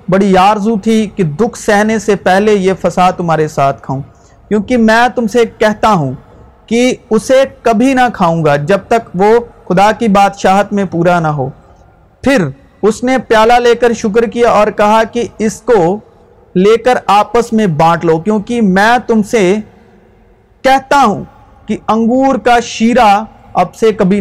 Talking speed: 165 wpm